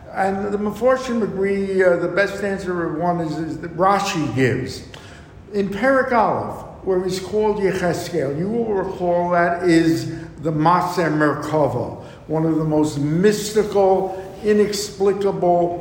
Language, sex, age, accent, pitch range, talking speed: English, male, 60-79, American, 165-195 Hz, 135 wpm